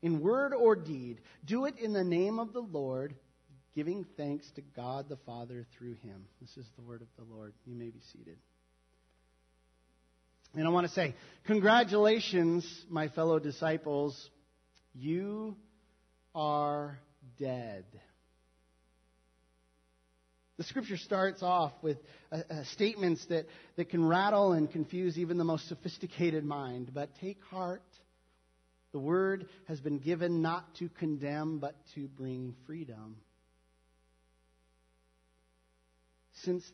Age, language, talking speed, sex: 40-59, English, 125 wpm, male